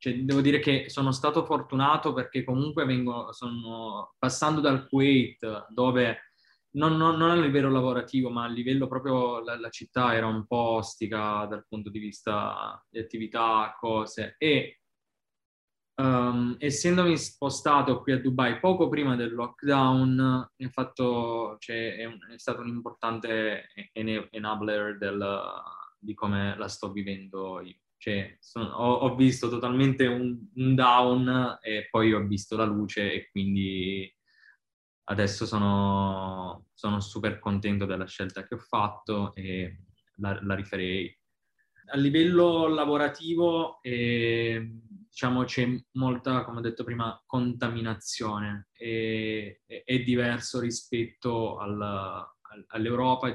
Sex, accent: male, native